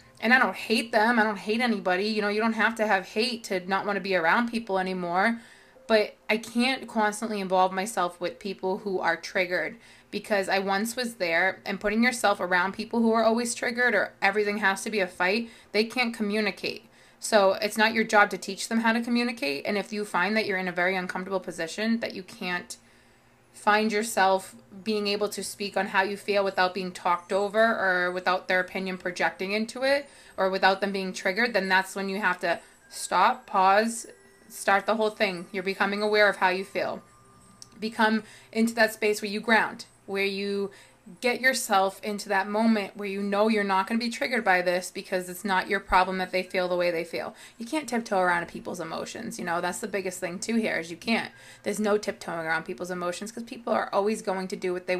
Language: English